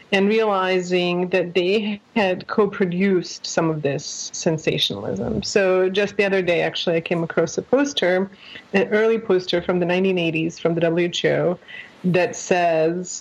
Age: 30-49